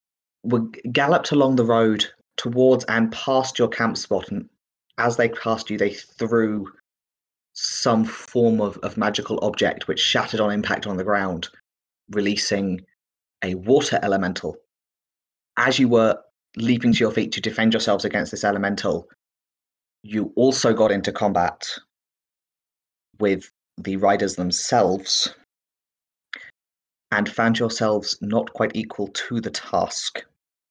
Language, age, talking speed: English, 30-49, 130 wpm